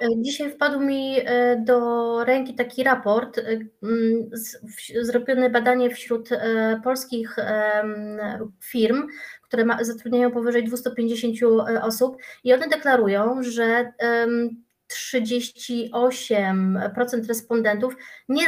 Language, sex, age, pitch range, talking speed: Polish, female, 20-39, 210-245 Hz, 80 wpm